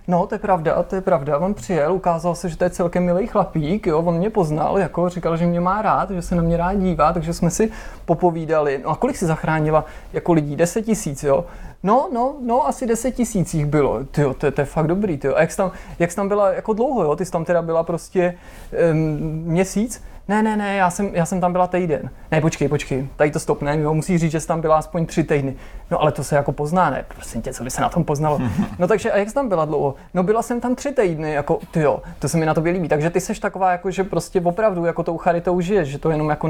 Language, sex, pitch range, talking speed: Czech, male, 155-190 Hz, 265 wpm